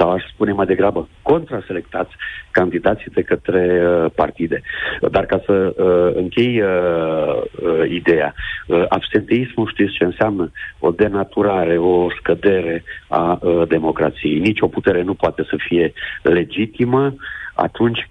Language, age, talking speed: Romanian, 50-69, 115 wpm